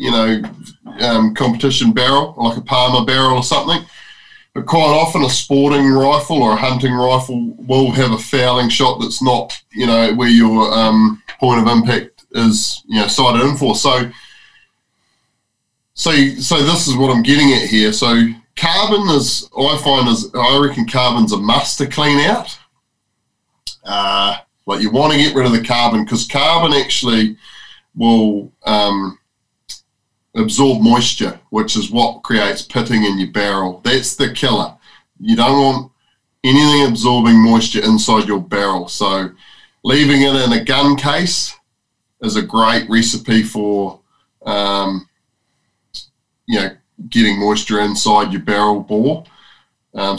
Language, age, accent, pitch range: English, 20-39, Australian, 110-135 Hz